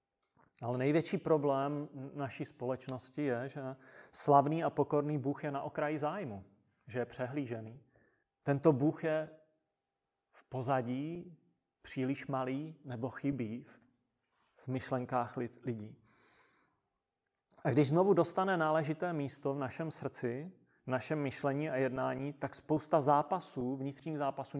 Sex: male